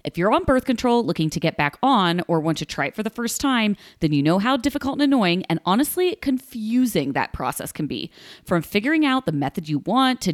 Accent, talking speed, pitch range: American, 240 wpm, 160-235 Hz